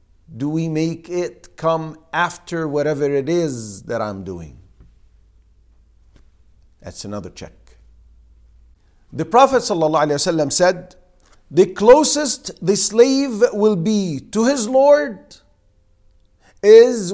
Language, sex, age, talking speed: English, male, 50-69, 100 wpm